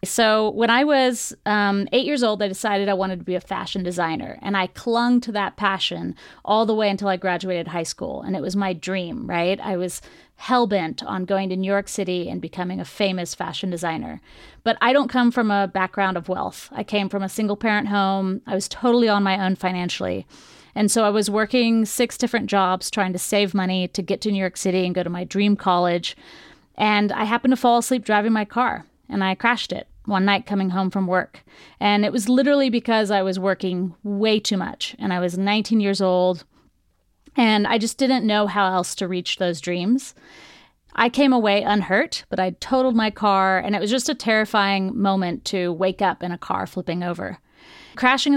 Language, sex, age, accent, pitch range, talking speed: English, female, 30-49, American, 185-230 Hz, 210 wpm